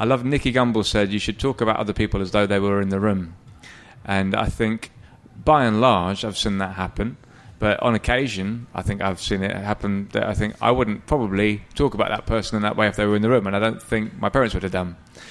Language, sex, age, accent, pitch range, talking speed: English, male, 30-49, British, 100-115 Hz, 255 wpm